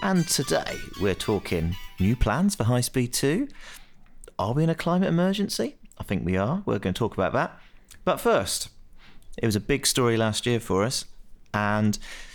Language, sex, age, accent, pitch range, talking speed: English, male, 30-49, British, 95-115 Hz, 185 wpm